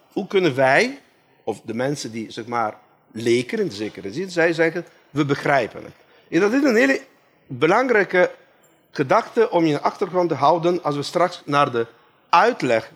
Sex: male